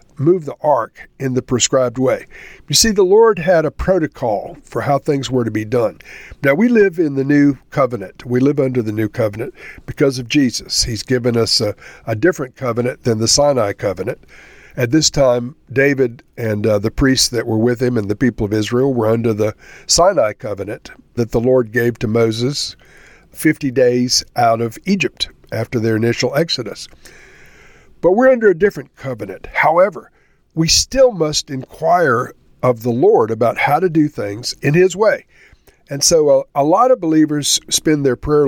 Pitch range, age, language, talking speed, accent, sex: 115-150 Hz, 50-69, English, 180 wpm, American, male